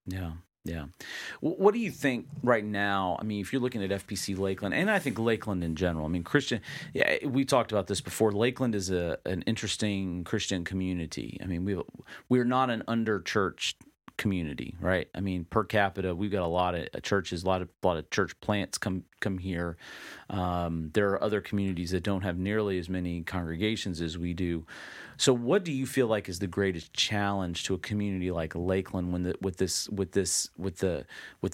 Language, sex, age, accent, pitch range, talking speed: English, male, 40-59, American, 90-105 Hz, 205 wpm